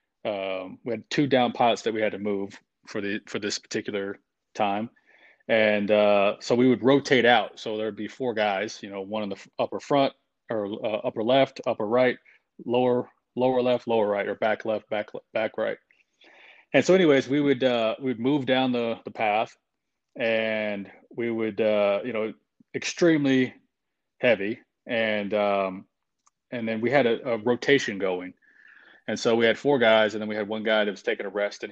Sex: male